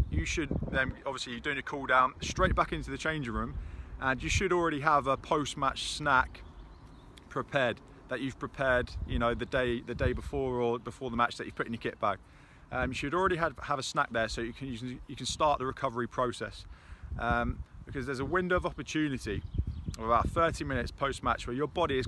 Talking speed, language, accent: 215 wpm, English, British